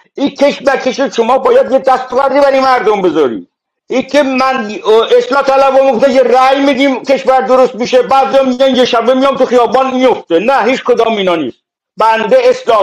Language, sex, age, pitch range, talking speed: Persian, male, 60-79, 205-275 Hz, 175 wpm